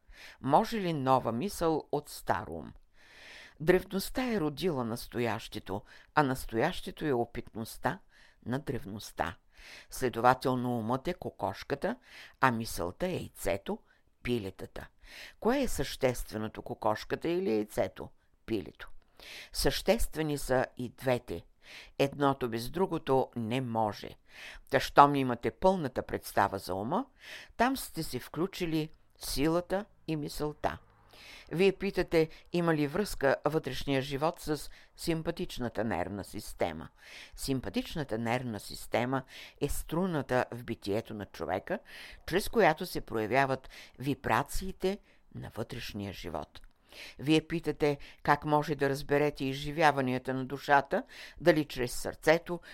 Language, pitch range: Bulgarian, 115-160 Hz